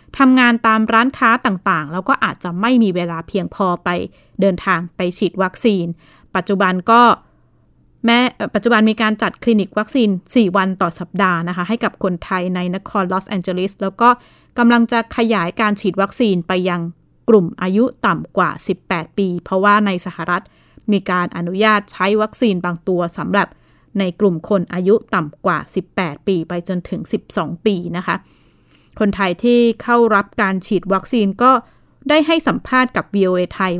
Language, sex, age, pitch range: Thai, female, 20-39, 185-230 Hz